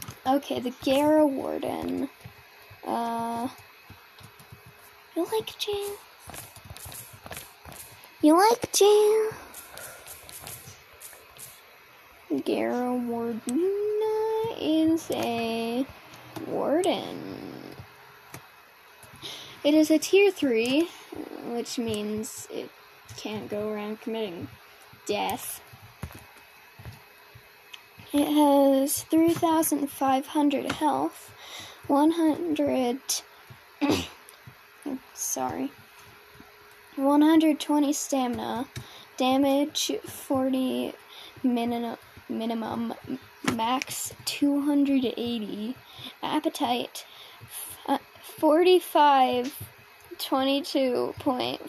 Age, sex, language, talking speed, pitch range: 10-29, female, English, 70 wpm, 245-320 Hz